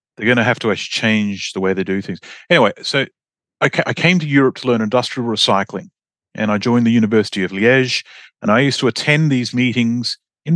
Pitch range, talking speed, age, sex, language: 110-140 Hz, 215 wpm, 40-59, male, English